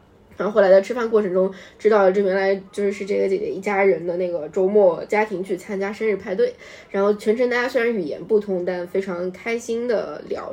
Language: Chinese